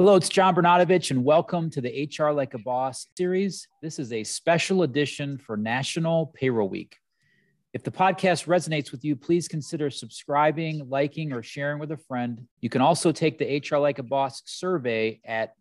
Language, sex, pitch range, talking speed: English, male, 125-155 Hz, 185 wpm